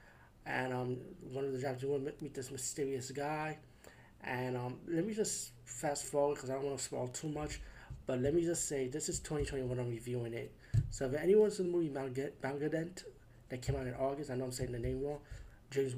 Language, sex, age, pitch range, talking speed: English, male, 20-39, 125-145 Hz, 225 wpm